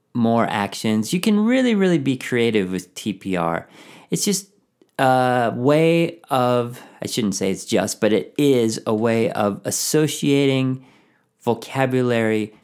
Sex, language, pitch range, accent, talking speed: male, English, 100-135 Hz, American, 135 wpm